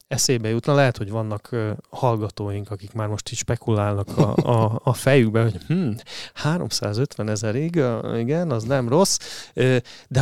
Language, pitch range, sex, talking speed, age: Hungarian, 110-135 Hz, male, 140 wpm, 30-49